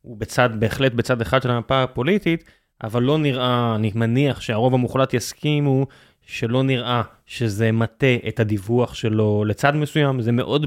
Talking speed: 150 wpm